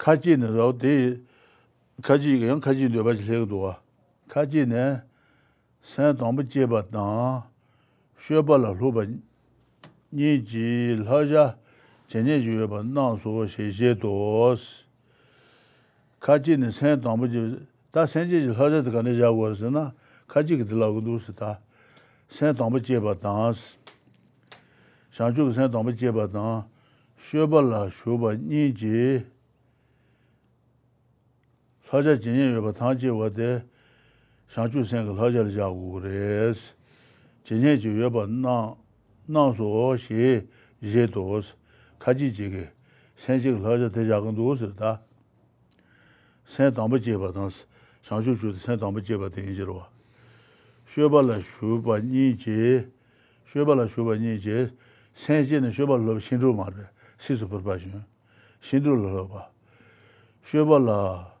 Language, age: English, 60-79